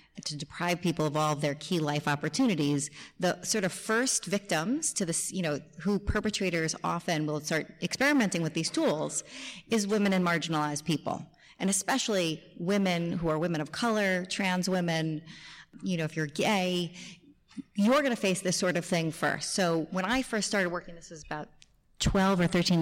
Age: 30-49